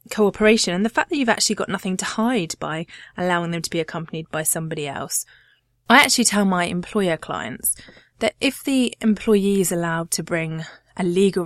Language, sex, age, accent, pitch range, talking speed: English, female, 20-39, British, 170-220 Hz, 190 wpm